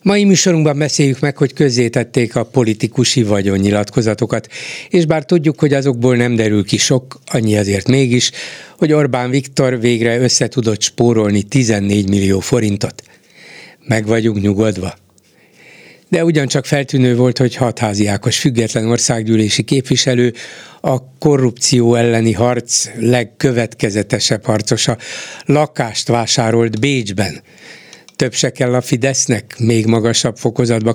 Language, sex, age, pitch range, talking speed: Hungarian, male, 60-79, 115-140 Hz, 115 wpm